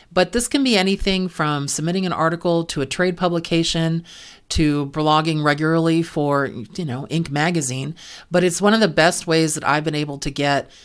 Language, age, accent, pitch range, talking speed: English, 40-59, American, 145-175 Hz, 190 wpm